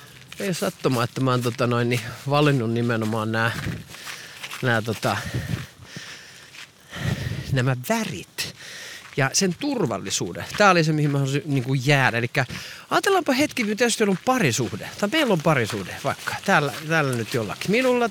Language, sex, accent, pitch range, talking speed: Finnish, male, native, 130-190 Hz, 140 wpm